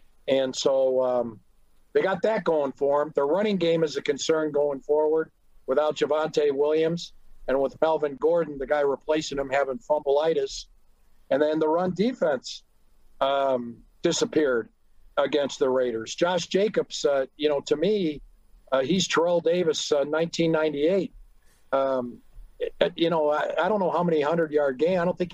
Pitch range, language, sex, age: 140-185 Hz, English, male, 50-69